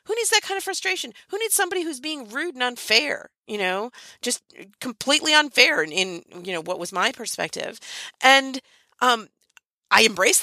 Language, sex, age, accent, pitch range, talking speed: English, female, 40-59, American, 170-250 Hz, 180 wpm